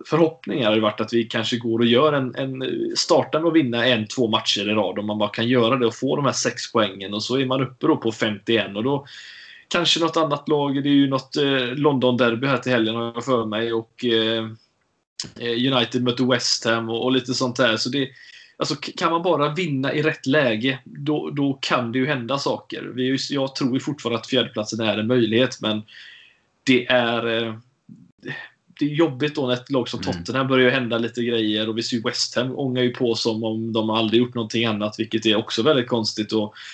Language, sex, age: Swedish, male, 20-39